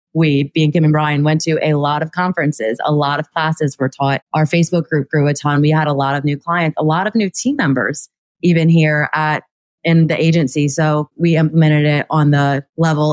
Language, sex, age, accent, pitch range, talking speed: English, female, 20-39, American, 145-160 Hz, 225 wpm